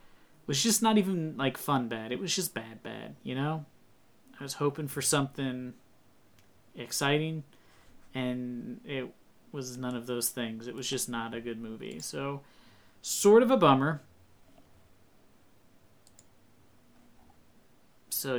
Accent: American